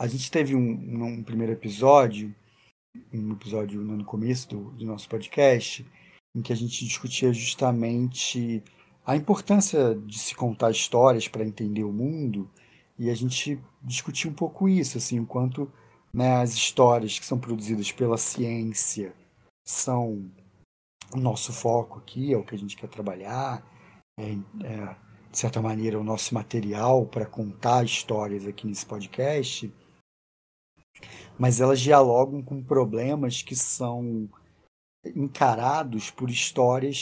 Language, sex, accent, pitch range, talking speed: Portuguese, male, Brazilian, 110-140 Hz, 140 wpm